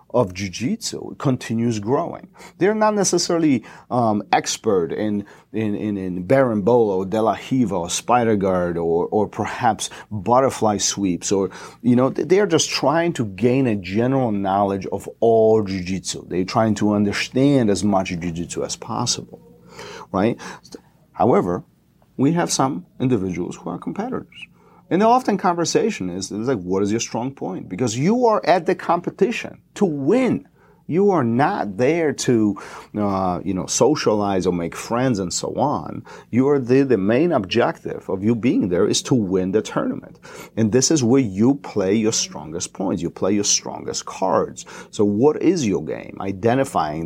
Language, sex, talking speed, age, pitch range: English, male, 160 wpm, 40-59, 100-135 Hz